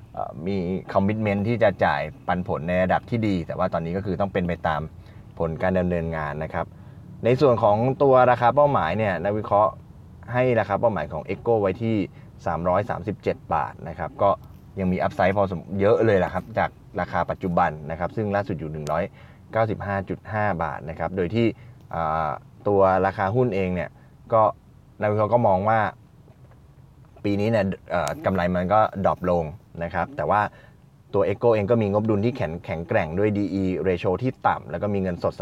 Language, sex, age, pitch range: Thai, male, 20-39, 85-110 Hz